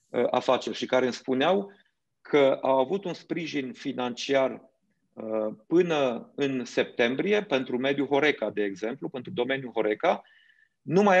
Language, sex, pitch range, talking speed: Romanian, male, 125-180 Hz, 125 wpm